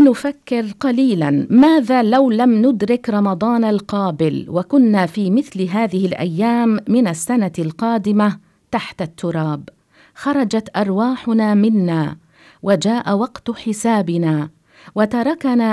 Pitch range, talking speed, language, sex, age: 180-245 Hz, 95 wpm, English, female, 50-69